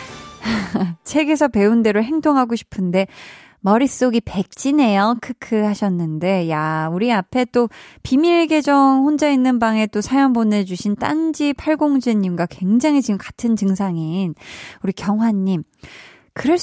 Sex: female